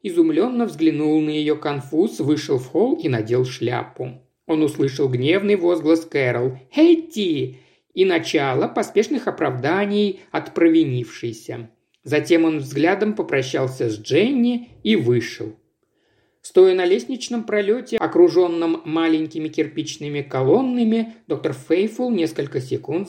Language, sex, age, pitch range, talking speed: Russian, male, 50-69, 135-205 Hz, 110 wpm